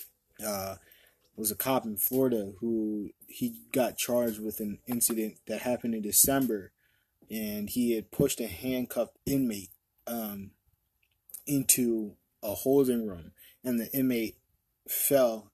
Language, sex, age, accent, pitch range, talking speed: English, male, 20-39, American, 105-130 Hz, 125 wpm